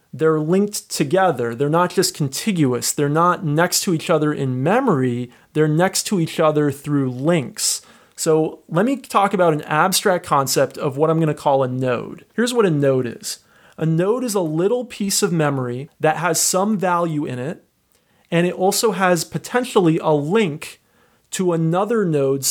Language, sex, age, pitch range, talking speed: English, male, 30-49, 150-190 Hz, 180 wpm